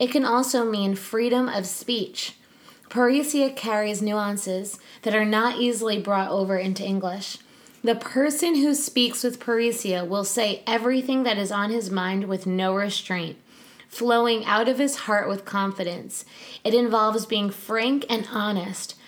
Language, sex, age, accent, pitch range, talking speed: English, female, 20-39, American, 200-245 Hz, 150 wpm